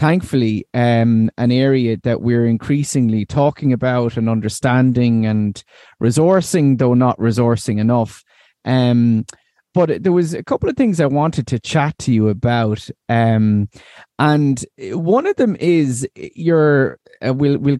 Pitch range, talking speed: 120-160 Hz, 140 wpm